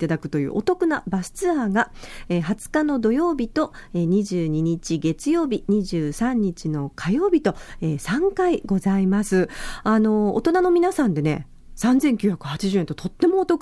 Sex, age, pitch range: female, 40-59, 170-245 Hz